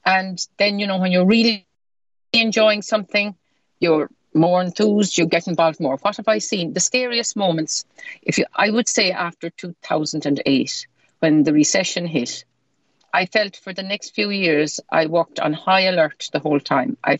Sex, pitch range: female, 155-200 Hz